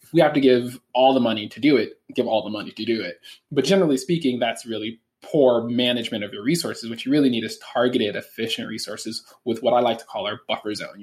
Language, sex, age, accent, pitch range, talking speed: English, male, 20-39, American, 110-135 Hz, 240 wpm